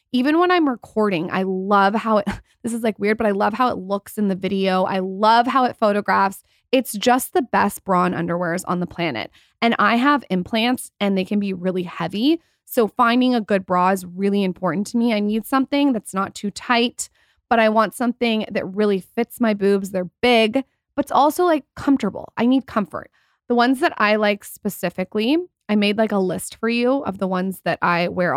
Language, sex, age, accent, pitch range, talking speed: English, female, 20-39, American, 190-240 Hz, 210 wpm